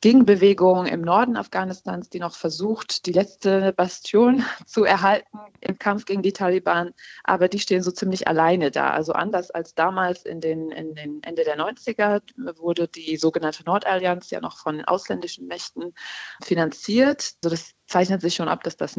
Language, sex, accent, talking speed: German, female, German, 160 wpm